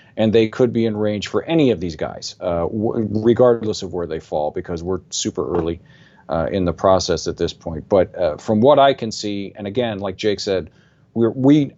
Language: English